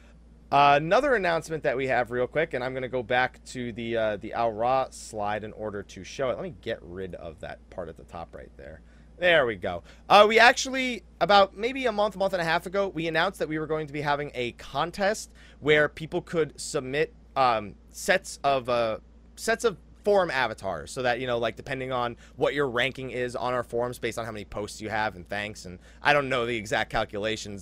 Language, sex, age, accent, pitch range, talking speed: English, male, 30-49, American, 110-165 Hz, 230 wpm